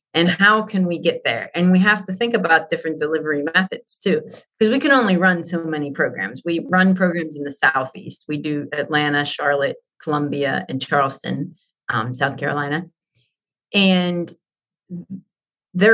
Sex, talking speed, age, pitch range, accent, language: female, 160 wpm, 40-59, 145-175 Hz, American, English